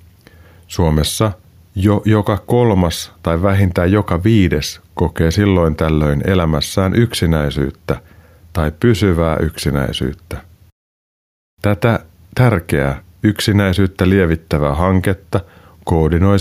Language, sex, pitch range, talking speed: Finnish, male, 80-100 Hz, 80 wpm